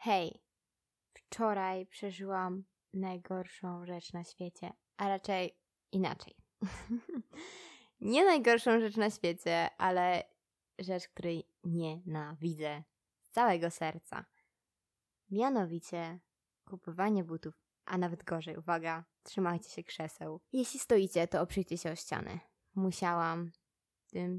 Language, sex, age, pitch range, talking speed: Polish, female, 20-39, 170-220 Hz, 100 wpm